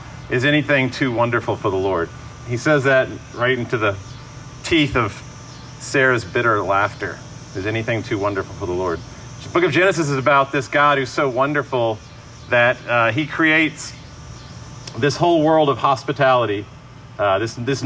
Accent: American